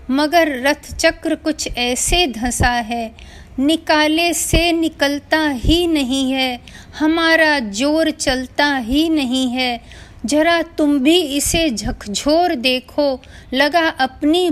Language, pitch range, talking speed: Hindi, 230-290 Hz, 110 wpm